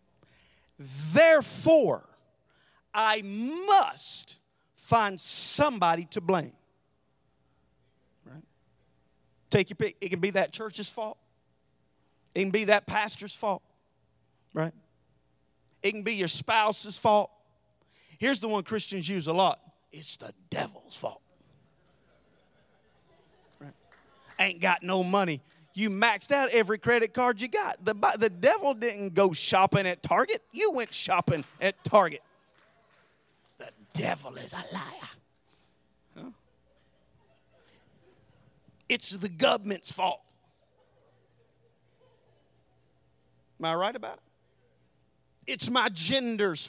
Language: English